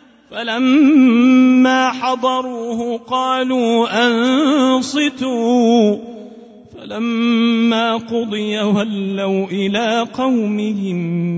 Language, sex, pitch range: Arabic, male, 205-260 Hz